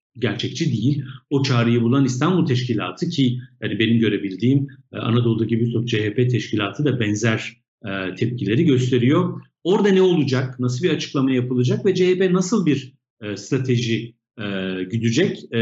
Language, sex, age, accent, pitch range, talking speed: Turkish, male, 50-69, native, 110-140 Hz, 125 wpm